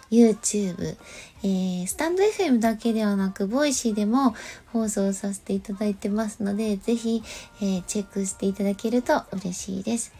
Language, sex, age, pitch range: Japanese, female, 20-39, 195-250 Hz